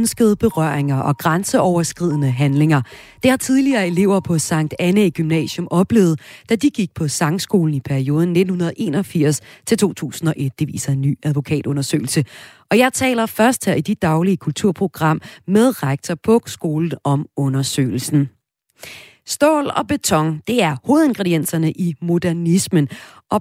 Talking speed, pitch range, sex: 130 wpm, 150-220 Hz, female